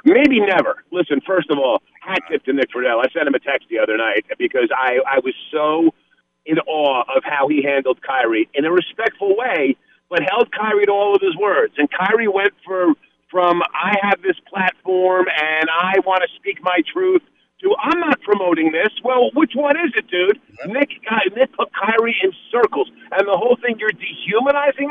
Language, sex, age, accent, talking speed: English, male, 50-69, American, 200 wpm